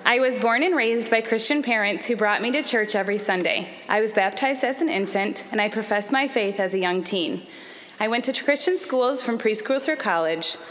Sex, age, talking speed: female, 20-39, 220 wpm